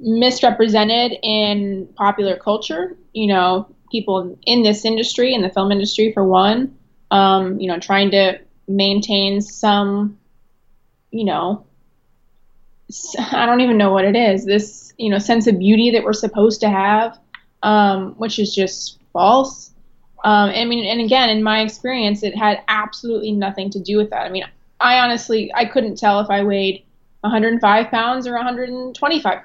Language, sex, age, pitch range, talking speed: English, female, 20-39, 200-235 Hz, 160 wpm